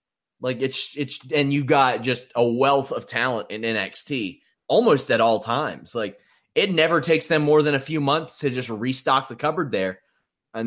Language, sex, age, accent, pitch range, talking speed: English, male, 30-49, American, 120-155 Hz, 190 wpm